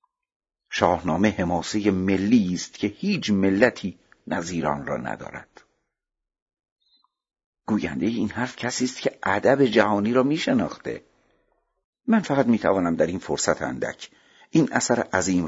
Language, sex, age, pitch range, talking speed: Persian, male, 50-69, 85-125 Hz, 125 wpm